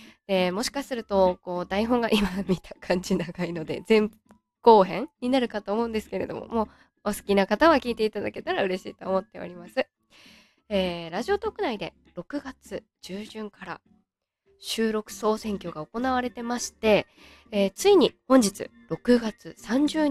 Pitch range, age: 190-260 Hz, 20-39